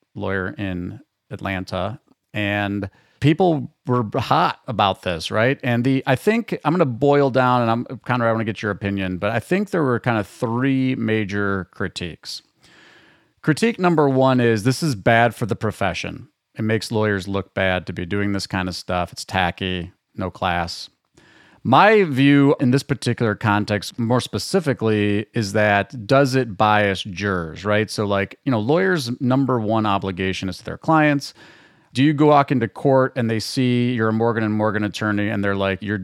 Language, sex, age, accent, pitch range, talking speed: English, male, 40-59, American, 95-130 Hz, 185 wpm